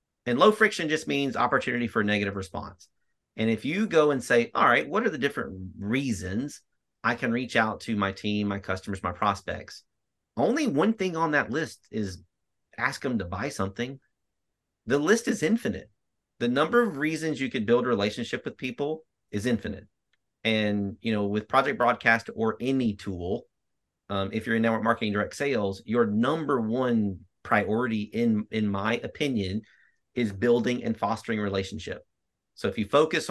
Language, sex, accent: English, male, American